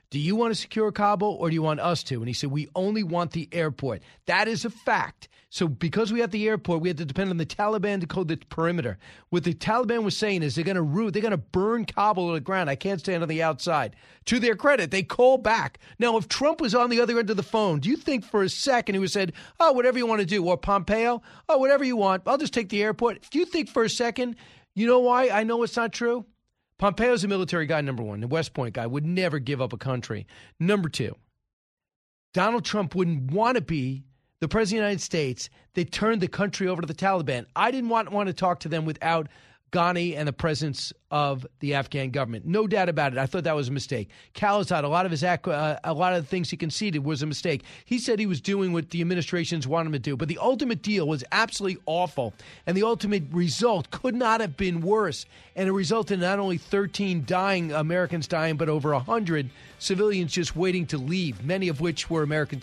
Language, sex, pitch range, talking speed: English, male, 155-215 Hz, 245 wpm